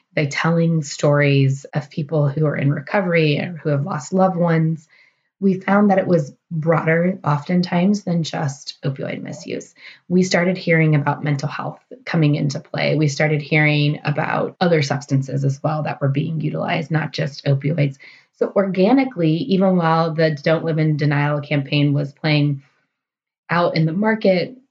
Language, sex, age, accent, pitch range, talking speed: English, female, 20-39, American, 150-175 Hz, 160 wpm